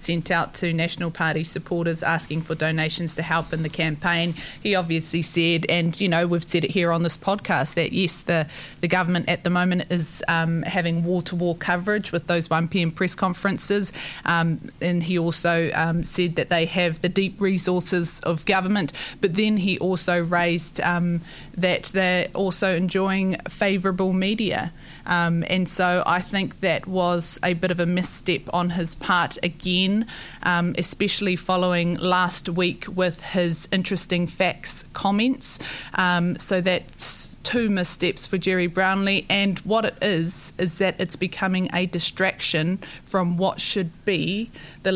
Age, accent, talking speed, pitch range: 20-39, Australian, 160 wpm, 170-195 Hz